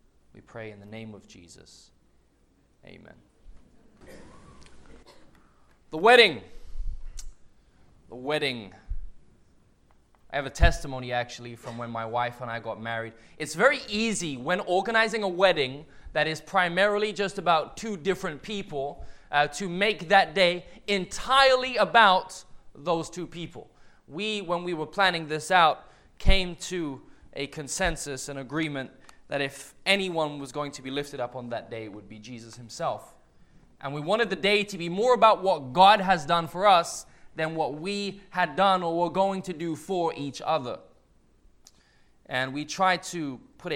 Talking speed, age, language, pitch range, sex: 155 wpm, 20-39, English, 130-195 Hz, male